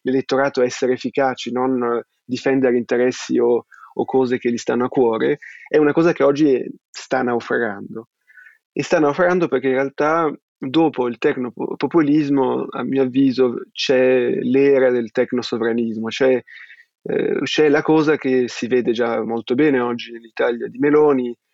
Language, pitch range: Italian, 120-140 Hz